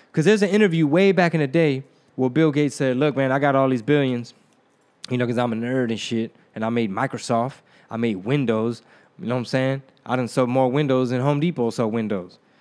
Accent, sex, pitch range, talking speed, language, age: American, male, 135-175 Hz, 240 wpm, English, 20-39